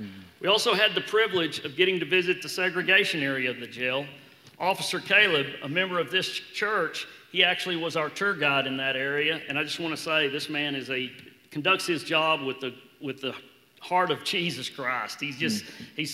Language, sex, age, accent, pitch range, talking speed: English, male, 40-59, American, 145-185 Hz, 205 wpm